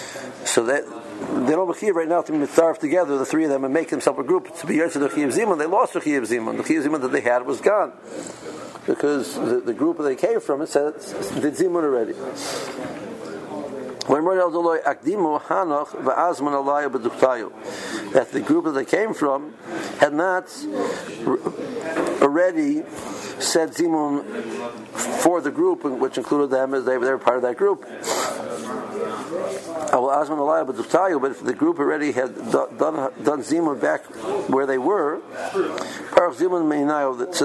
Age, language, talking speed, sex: 60-79, English, 165 wpm, male